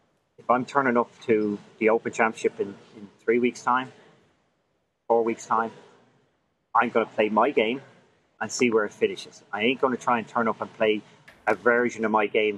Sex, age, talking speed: male, 30-49, 200 wpm